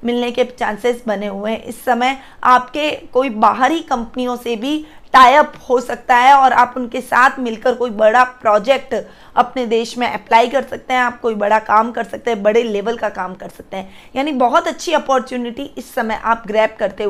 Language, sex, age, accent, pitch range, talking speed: Hindi, female, 20-39, native, 215-265 Hz, 195 wpm